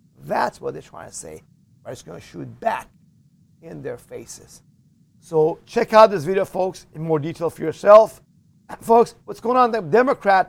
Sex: male